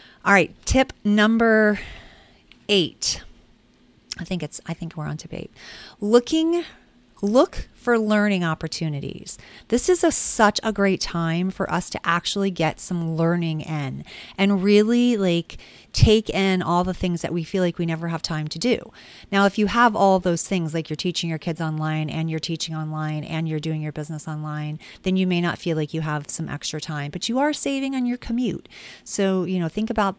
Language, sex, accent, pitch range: English, female, American, 160-200 Hz